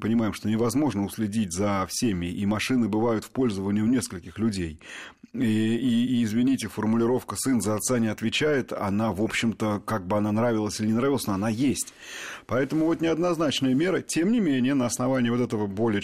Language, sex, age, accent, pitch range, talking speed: Russian, male, 30-49, native, 105-130 Hz, 185 wpm